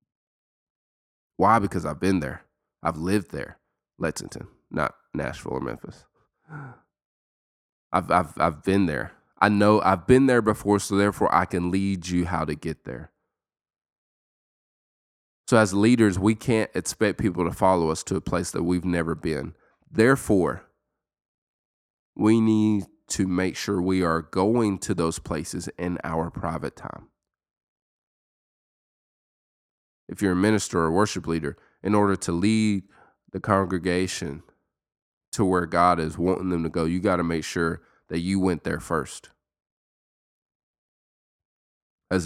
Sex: male